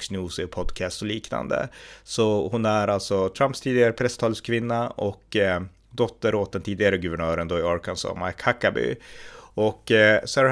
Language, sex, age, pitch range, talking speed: Swedish, male, 30-49, 95-110 Hz, 135 wpm